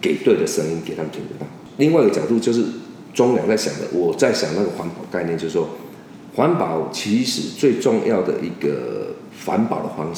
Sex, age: male, 50-69